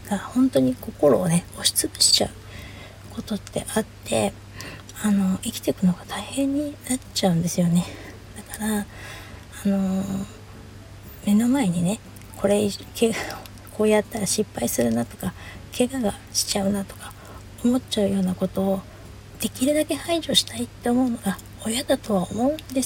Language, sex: Japanese, female